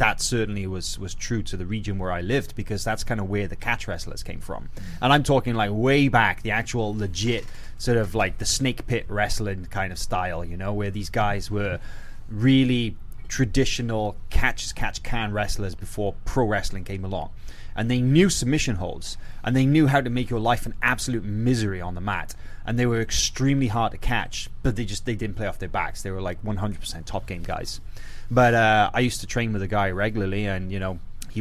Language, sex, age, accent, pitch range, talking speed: English, male, 20-39, British, 95-115 Hz, 215 wpm